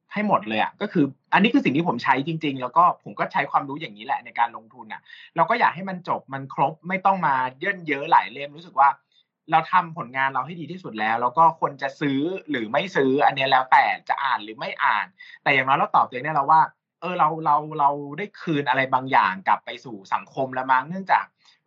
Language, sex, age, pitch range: Thai, male, 20-39, 135-185 Hz